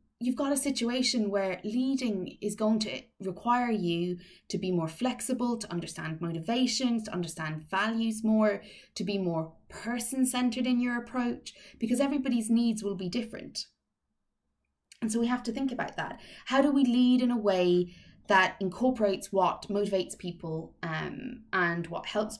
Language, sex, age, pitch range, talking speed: English, female, 20-39, 180-235 Hz, 160 wpm